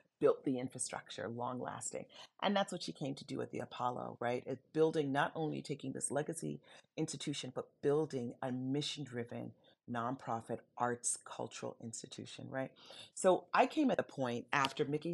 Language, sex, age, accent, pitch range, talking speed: English, female, 40-59, American, 130-165 Hz, 165 wpm